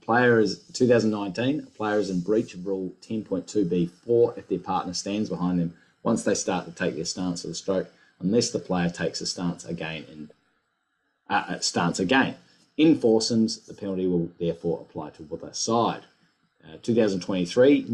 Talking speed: 165 wpm